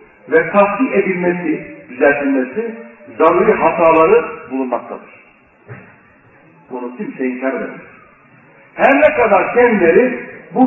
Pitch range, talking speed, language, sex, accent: 160-235 Hz, 90 wpm, Turkish, male, native